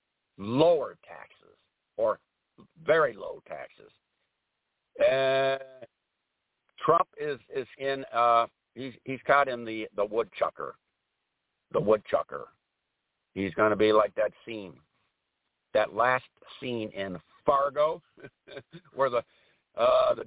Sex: male